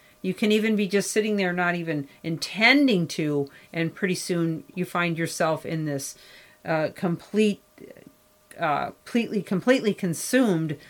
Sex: female